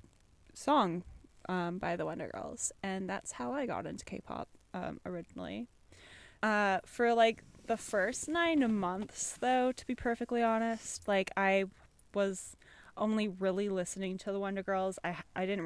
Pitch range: 190-235 Hz